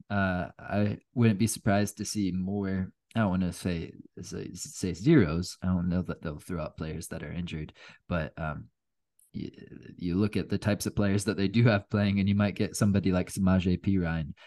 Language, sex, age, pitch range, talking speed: English, male, 20-39, 90-115 Hz, 205 wpm